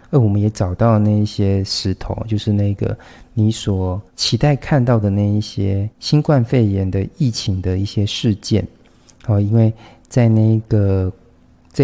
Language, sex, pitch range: Chinese, male, 100-120 Hz